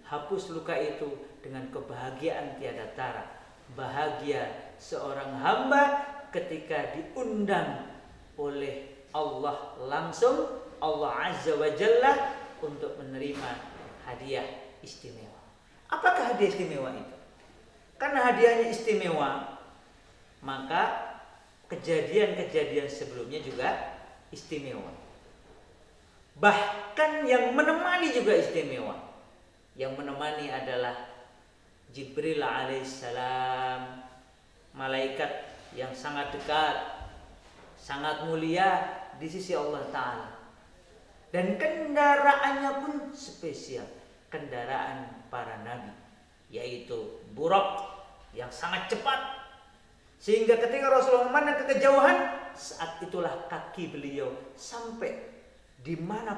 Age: 40-59